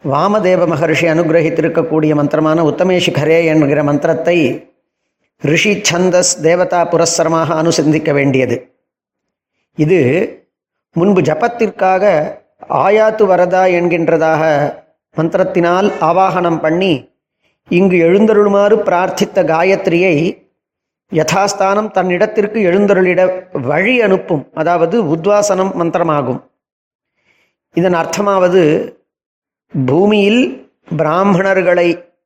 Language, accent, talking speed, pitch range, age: Tamil, native, 70 wpm, 165-200 Hz, 40-59